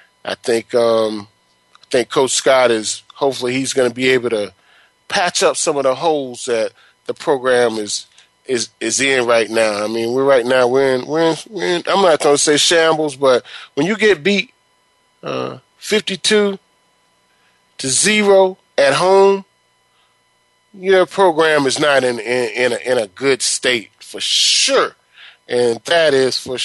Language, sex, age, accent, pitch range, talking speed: English, male, 30-49, American, 125-180 Hz, 175 wpm